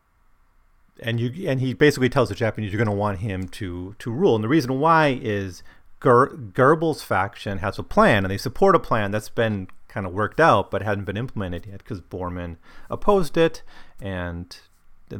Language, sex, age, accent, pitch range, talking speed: English, male, 30-49, American, 95-120 Hz, 195 wpm